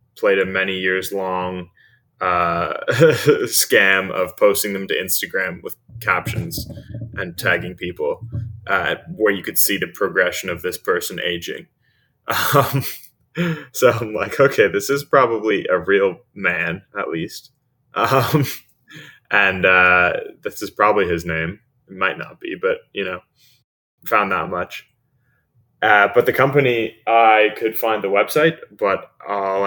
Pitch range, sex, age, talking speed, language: 95-140 Hz, male, 20-39, 140 wpm, English